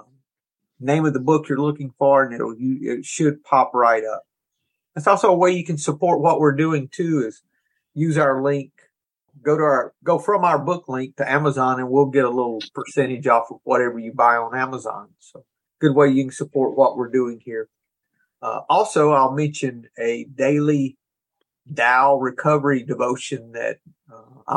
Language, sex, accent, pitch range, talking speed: English, male, American, 125-150 Hz, 180 wpm